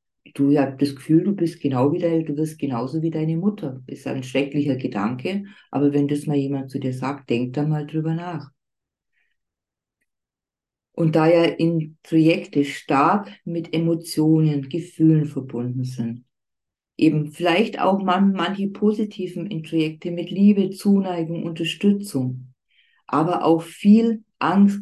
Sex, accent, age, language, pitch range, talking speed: female, German, 40-59, German, 150-195 Hz, 130 wpm